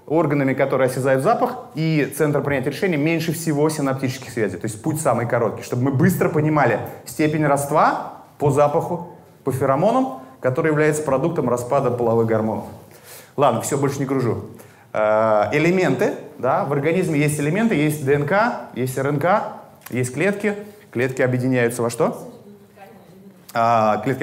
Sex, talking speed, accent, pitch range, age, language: male, 135 wpm, native, 120-175 Hz, 30-49, Russian